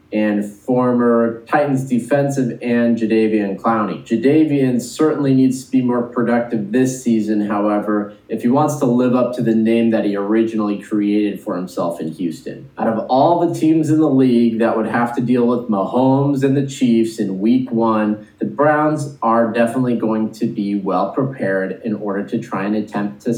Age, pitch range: 30-49, 115-135 Hz